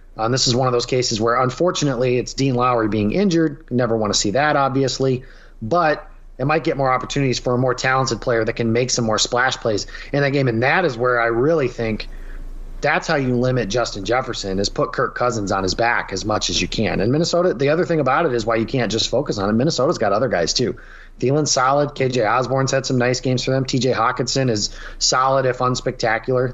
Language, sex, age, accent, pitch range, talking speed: English, male, 30-49, American, 115-135 Hz, 235 wpm